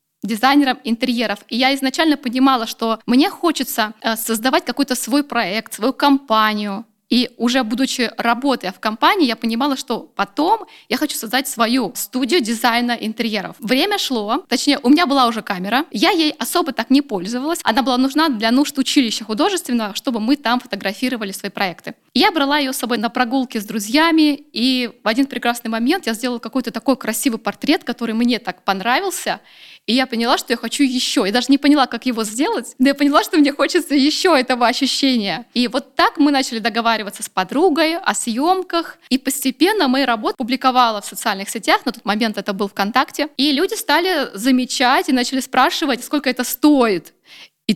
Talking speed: 175 wpm